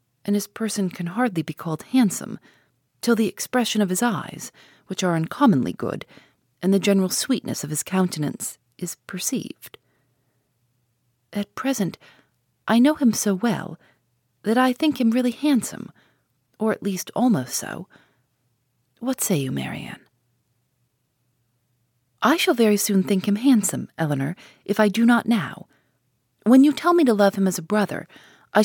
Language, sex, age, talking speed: English, female, 40-59, 155 wpm